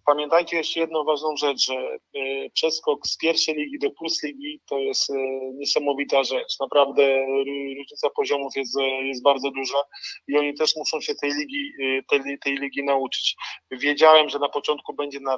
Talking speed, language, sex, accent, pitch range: 155 wpm, Polish, male, native, 135-150 Hz